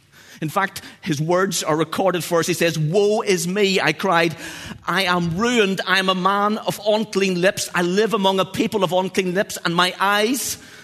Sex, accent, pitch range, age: male, British, 145-205 Hz, 30-49